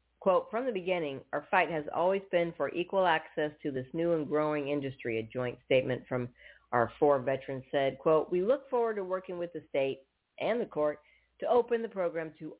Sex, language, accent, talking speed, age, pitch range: female, English, American, 205 wpm, 50-69, 140-185 Hz